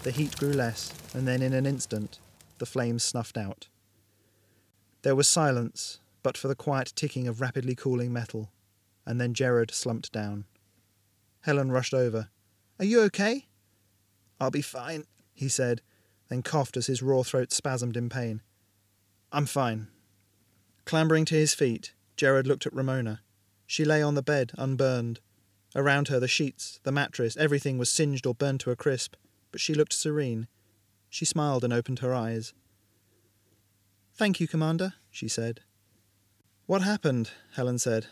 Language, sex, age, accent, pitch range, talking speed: English, male, 30-49, British, 105-145 Hz, 155 wpm